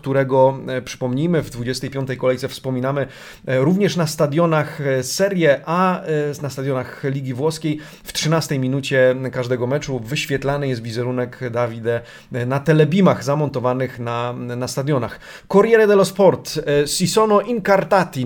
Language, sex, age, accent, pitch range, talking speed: Polish, male, 30-49, native, 130-165 Hz, 115 wpm